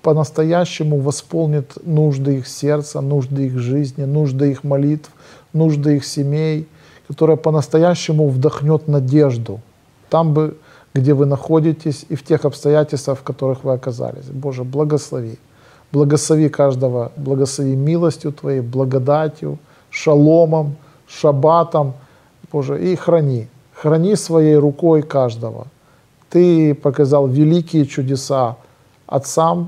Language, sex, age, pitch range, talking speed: Russian, male, 40-59, 130-155 Hz, 105 wpm